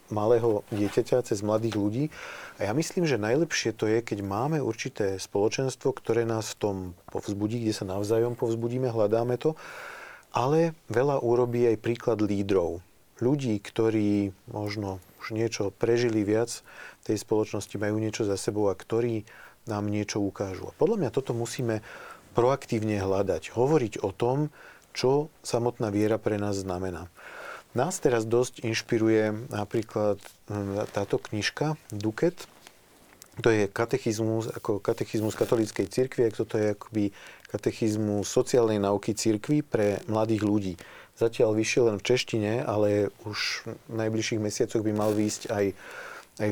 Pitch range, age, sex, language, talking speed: 105-115 Hz, 40-59, male, Slovak, 140 wpm